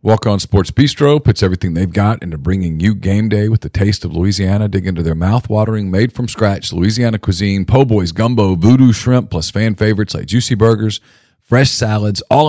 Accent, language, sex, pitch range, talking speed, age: American, English, male, 95-115 Hz, 180 wpm, 40-59